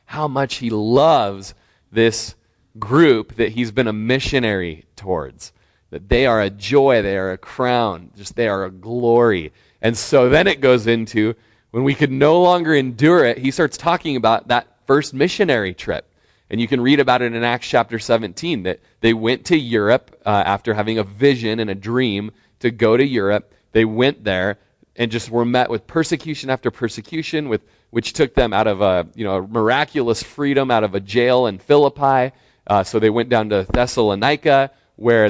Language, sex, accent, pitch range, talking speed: English, male, American, 105-135 Hz, 185 wpm